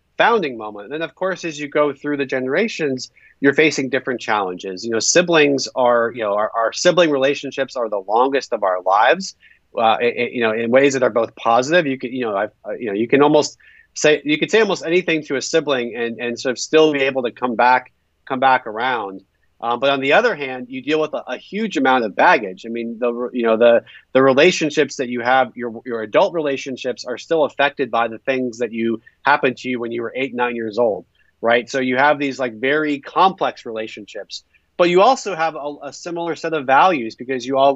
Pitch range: 120-150 Hz